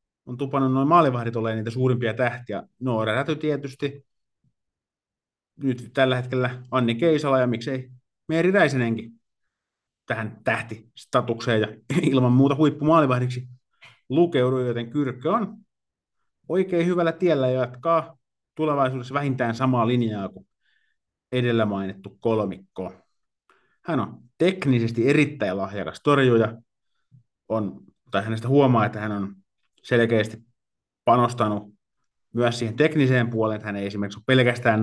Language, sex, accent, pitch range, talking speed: Finnish, male, native, 105-130 Hz, 115 wpm